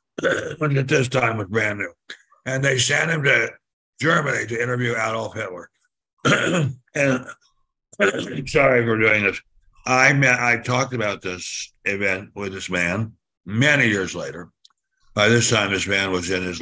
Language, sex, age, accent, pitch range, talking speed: English, male, 60-79, American, 105-130 Hz, 150 wpm